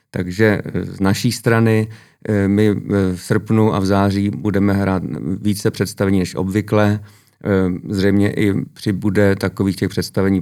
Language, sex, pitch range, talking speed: Czech, male, 95-105 Hz, 125 wpm